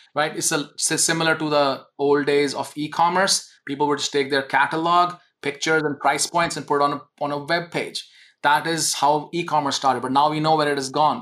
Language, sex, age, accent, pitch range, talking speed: English, male, 30-49, Indian, 145-165 Hz, 215 wpm